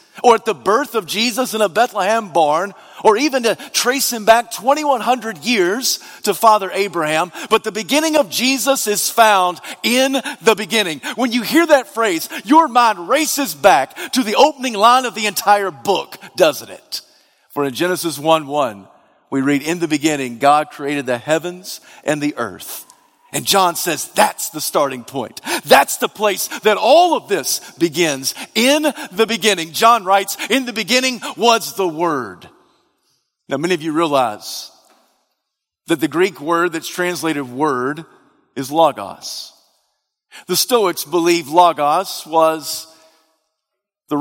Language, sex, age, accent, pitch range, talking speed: English, male, 40-59, American, 160-235 Hz, 150 wpm